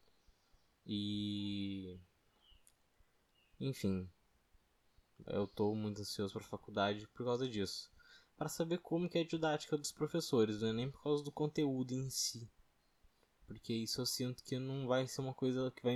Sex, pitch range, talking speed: male, 100-130 Hz, 155 wpm